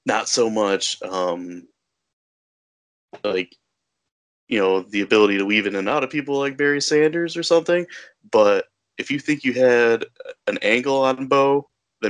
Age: 20-39